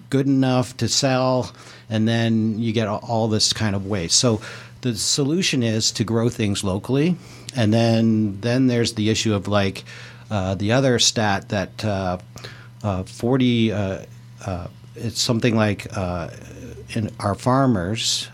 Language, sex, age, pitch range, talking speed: English, male, 60-79, 95-120 Hz, 150 wpm